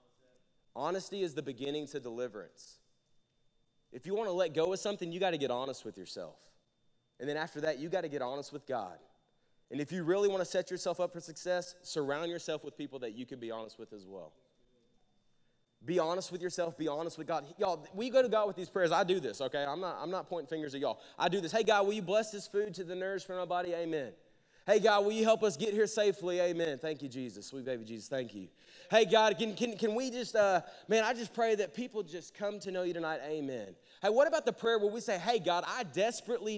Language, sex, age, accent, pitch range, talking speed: English, male, 30-49, American, 155-225 Hz, 250 wpm